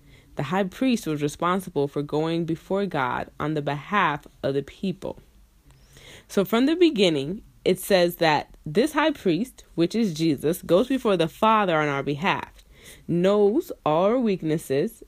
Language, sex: English, female